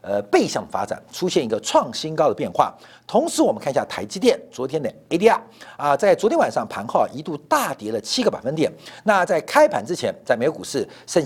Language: Chinese